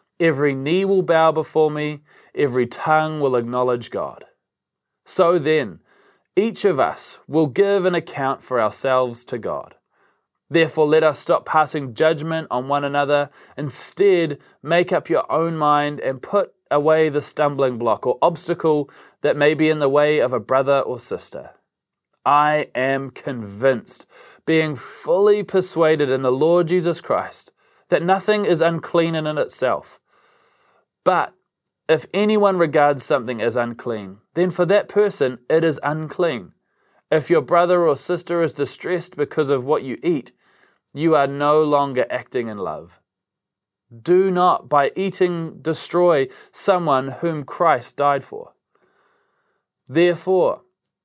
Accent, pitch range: Australian, 140-175 Hz